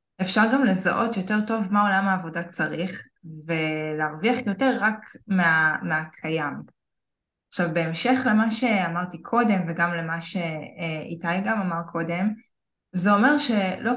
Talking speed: 120 wpm